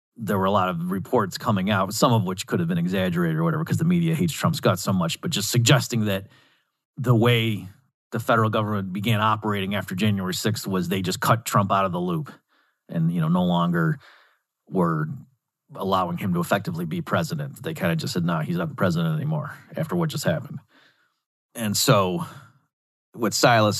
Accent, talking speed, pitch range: American, 200 wpm, 105-165 Hz